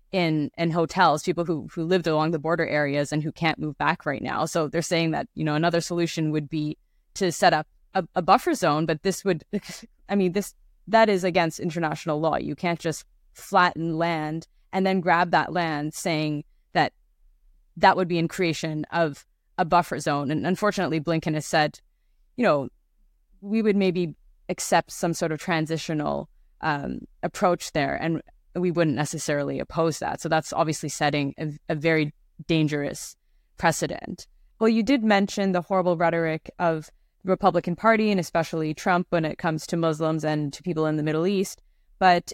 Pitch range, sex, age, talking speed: 155-180 Hz, female, 20-39, 180 wpm